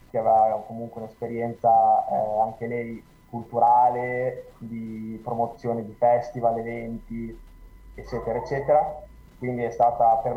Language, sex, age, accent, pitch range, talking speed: Italian, male, 20-39, native, 115-125 Hz, 105 wpm